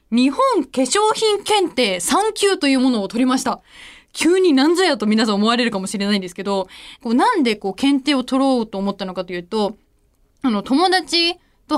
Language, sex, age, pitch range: Japanese, female, 20-39, 205-335 Hz